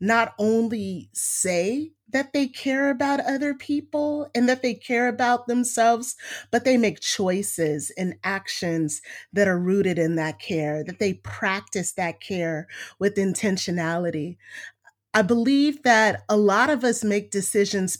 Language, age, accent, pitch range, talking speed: English, 30-49, American, 180-230 Hz, 145 wpm